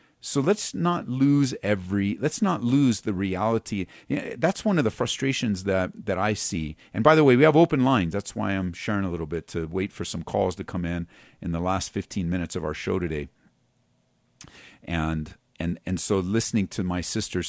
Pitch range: 90-130 Hz